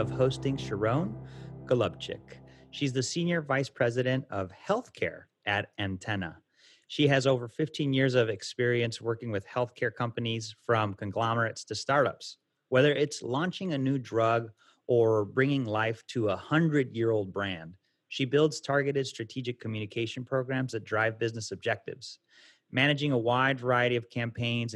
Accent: American